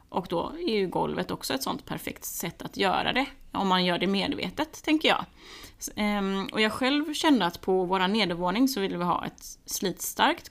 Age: 30-49